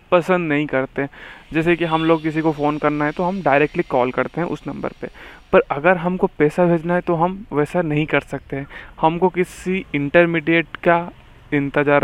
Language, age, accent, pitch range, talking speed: Hindi, 20-39, native, 145-175 Hz, 190 wpm